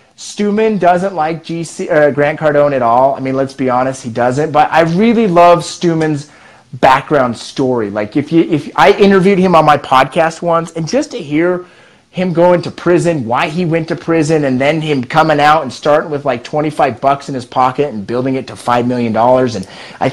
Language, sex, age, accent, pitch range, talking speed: English, male, 30-49, American, 125-170 Hz, 205 wpm